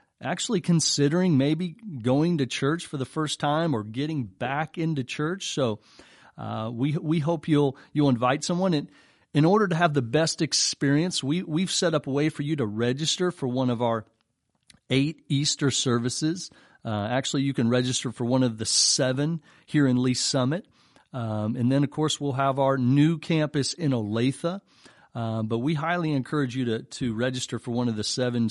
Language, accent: English, American